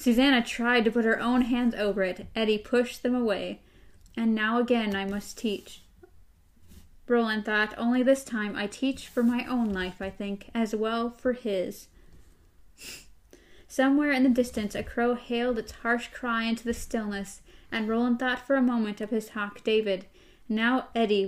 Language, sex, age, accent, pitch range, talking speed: English, female, 10-29, American, 215-250 Hz, 170 wpm